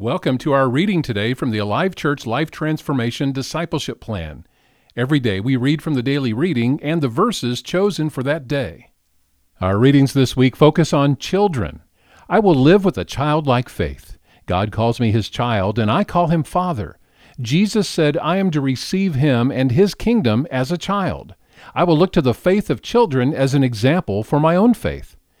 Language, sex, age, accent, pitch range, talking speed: English, male, 50-69, American, 115-155 Hz, 190 wpm